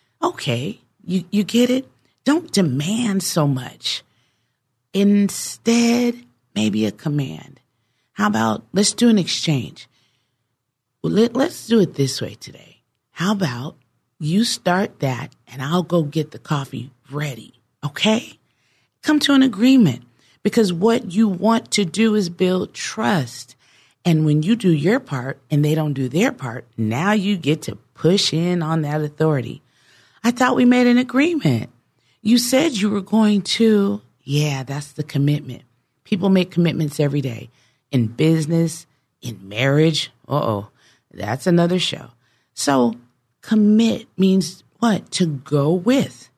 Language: English